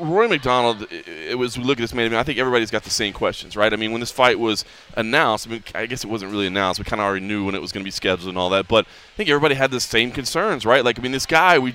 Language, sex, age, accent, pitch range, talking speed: English, male, 20-39, American, 115-160 Hz, 315 wpm